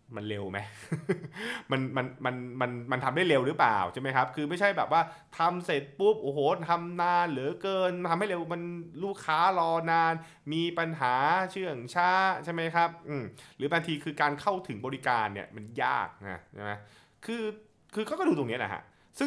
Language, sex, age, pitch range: Thai, male, 20-39, 115-165 Hz